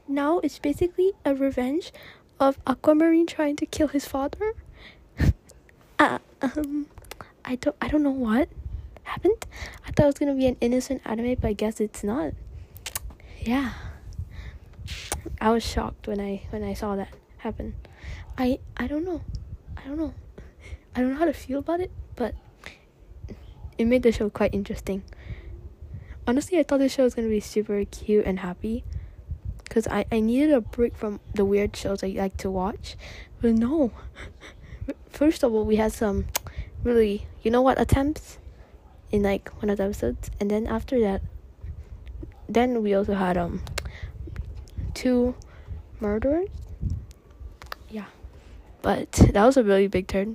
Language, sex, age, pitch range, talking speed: English, female, 10-29, 195-275 Hz, 160 wpm